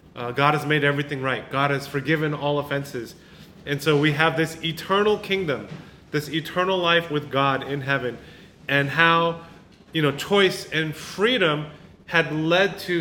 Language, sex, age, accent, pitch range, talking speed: English, male, 30-49, American, 135-170 Hz, 160 wpm